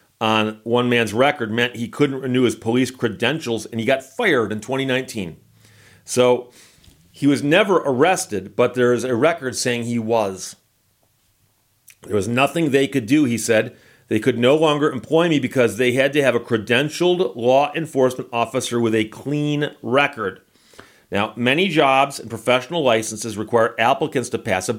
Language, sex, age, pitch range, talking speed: English, male, 40-59, 115-140 Hz, 165 wpm